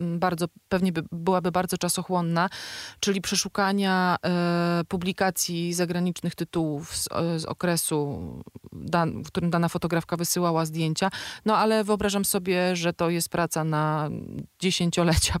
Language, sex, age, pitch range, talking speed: Polish, female, 30-49, 165-190 Hz, 125 wpm